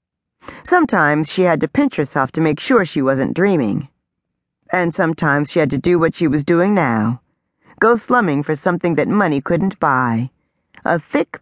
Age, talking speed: 40-59, 175 wpm